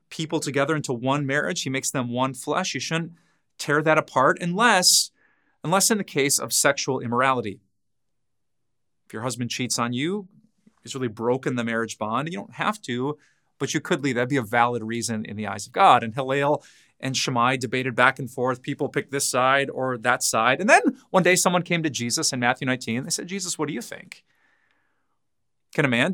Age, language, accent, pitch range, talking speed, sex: 30-49, English, American, 120-155 Hz, 205 wpm, male